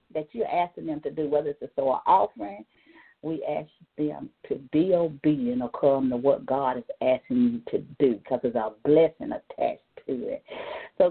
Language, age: English, 50-69